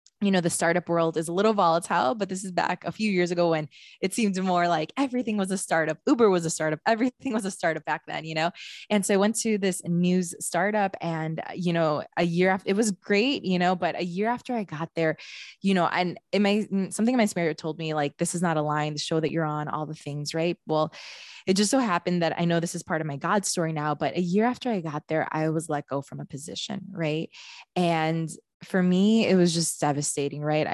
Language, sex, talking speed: English, female, 250 wpm